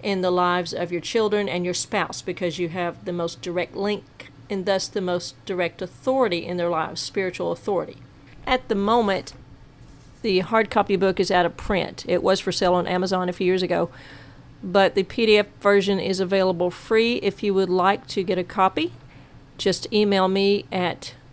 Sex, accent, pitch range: female, American, 180-210 Hz